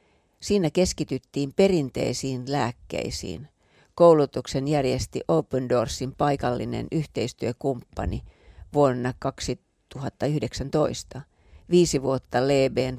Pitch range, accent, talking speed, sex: 115-145 Hz, native, 70 wpm, female